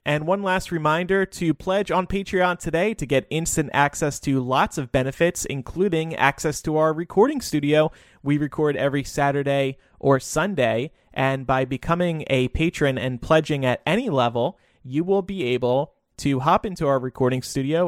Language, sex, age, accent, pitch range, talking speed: English, male, 30-49, American, 130-155 Hz, 165 wpm